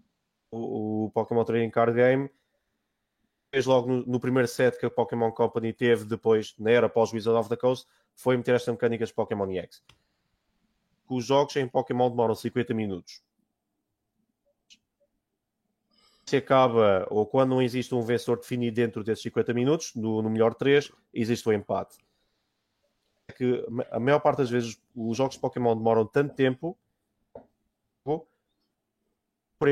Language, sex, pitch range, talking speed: Portuguese, male, 115-140 Hz, 145 wpm